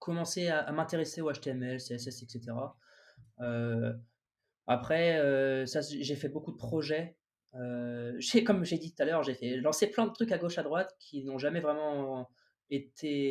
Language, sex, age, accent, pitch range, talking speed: French, male, 20-39, French, 135-175 Hz, 185 wpm